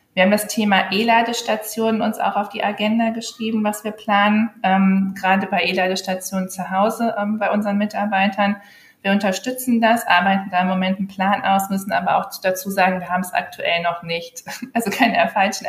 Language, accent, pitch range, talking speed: German, German, 180-210 Hz, 185 wpm